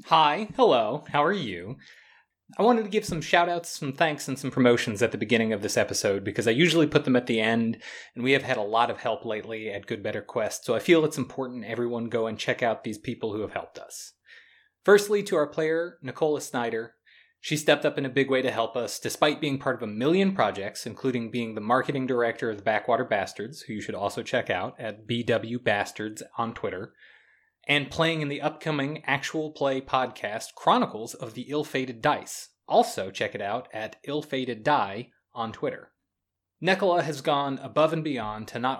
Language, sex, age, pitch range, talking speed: English, male, 20-39, 120-155 Hz, 205 wpm